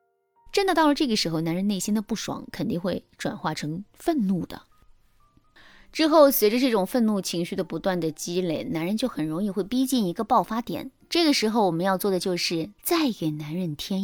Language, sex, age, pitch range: Chinese, female, 20-39, 175-270 Hz